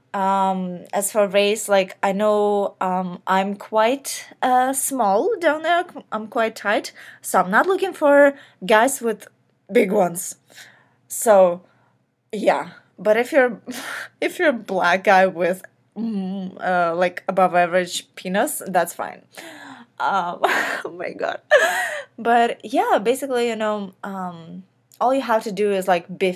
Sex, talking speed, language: female, 145 wpm, English